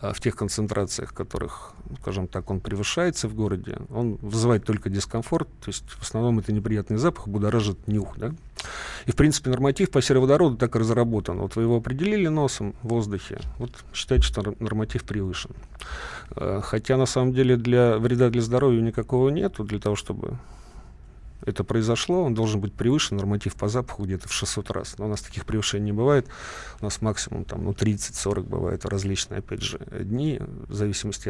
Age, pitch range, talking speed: 40-59, 105-125 Hz, 175 wpm